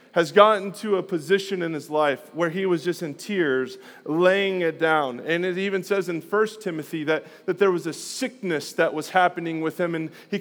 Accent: American